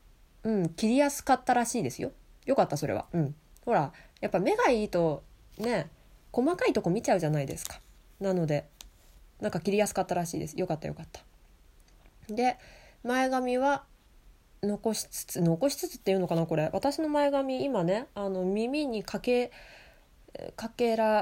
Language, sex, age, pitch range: Japanese, female, 20-39, 175-250 Hz